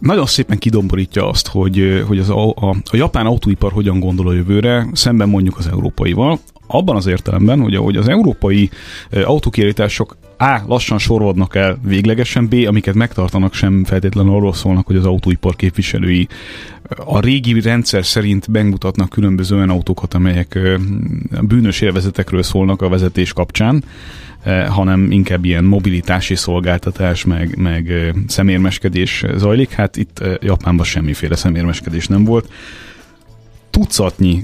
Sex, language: male, Hungarian